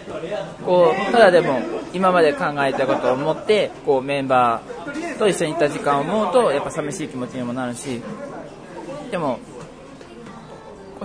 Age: 20-39